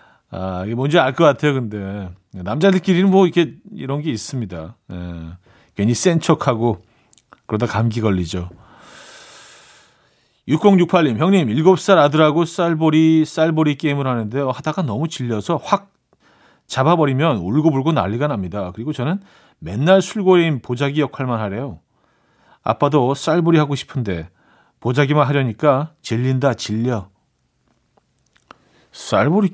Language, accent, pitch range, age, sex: Korean, native, 110-160 Hz, 40-59, male